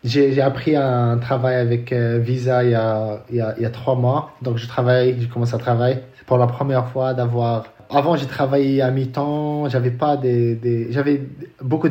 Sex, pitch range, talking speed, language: male, 125-145 Hz, 215 wpm, French